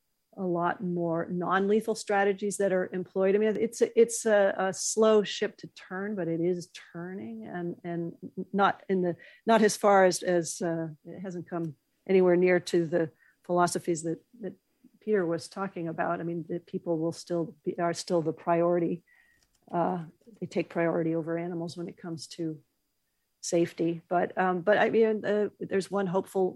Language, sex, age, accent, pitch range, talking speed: English, female, 50-69, American, 170-195 Hz, 185 wpm